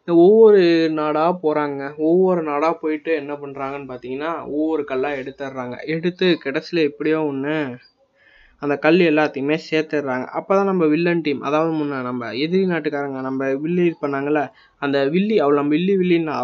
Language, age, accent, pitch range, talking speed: Tamil, 20-39, native, 135-165 Hz, 150 wpm